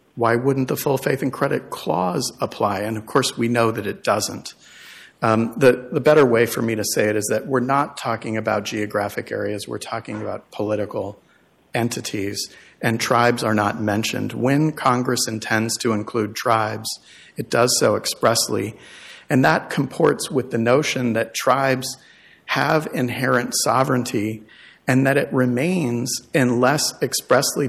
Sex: male